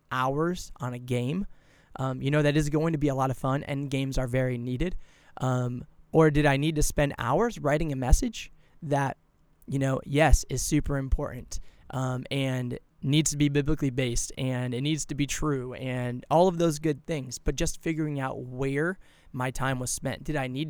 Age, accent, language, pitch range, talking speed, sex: 20-39, American, English, 130-155 Hz, 205 wpm, male